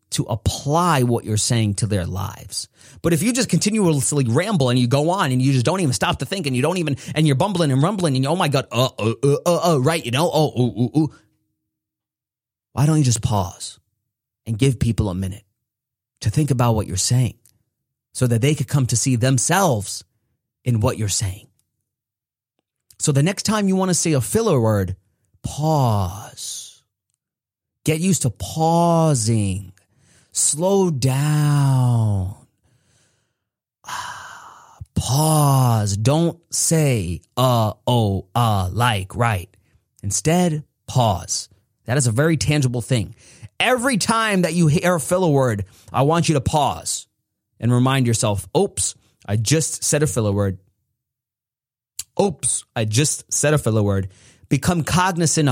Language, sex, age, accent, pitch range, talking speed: English, male, 30-49, American, 110-150 Hz, 155 wpm